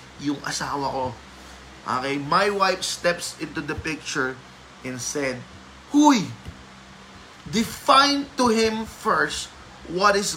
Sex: male